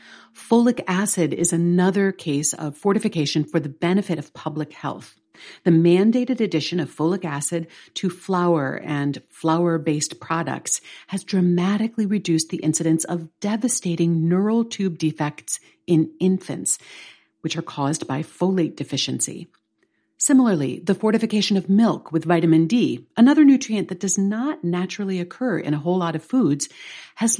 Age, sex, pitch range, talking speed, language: 50-69, female, 160-215 Hz, 140 wpm, English